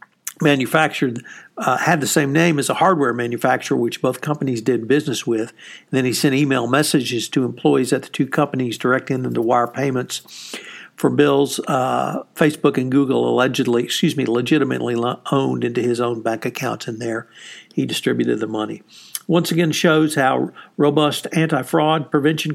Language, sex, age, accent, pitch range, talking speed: English, male, 60-79, American, 125-155 Hz, 160 wpm